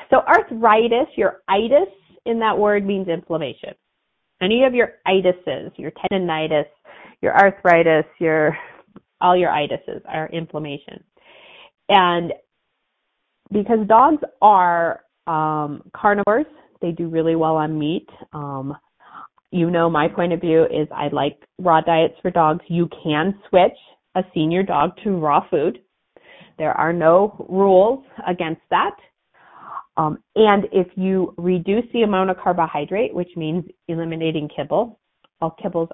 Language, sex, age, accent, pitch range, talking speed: English, female, 30-49, American, 165-205 Hz, 130 wpm